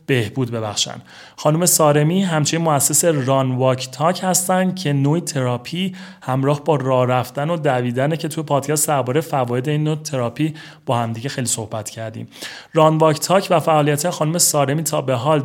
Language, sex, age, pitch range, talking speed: Persian, male, 30-49, 130-160 Hz, 165 wpm